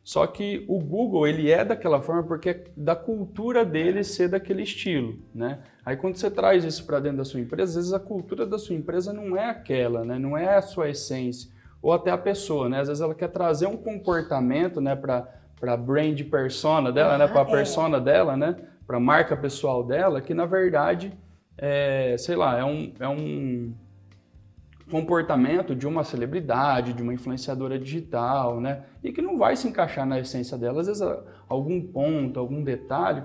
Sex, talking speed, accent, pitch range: male, 190 wpm, Brazilian, 125-175 Hz